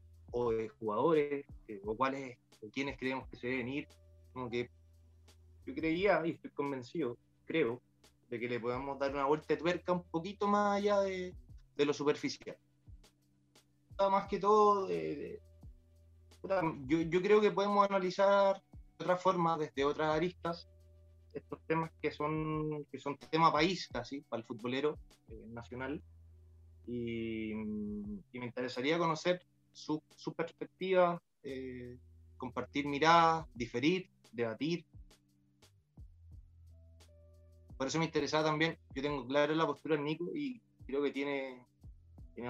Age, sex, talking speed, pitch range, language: 20-39, male, 135 wpm, 110-165 Hz, Spanish